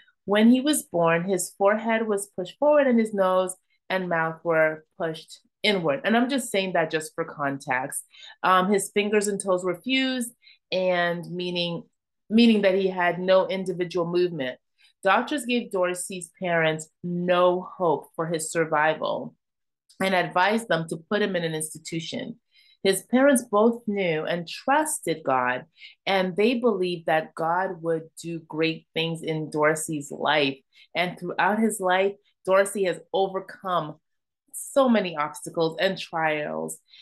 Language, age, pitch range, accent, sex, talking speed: English, 30-49, 165-215 Hz, American, female, 145 wpm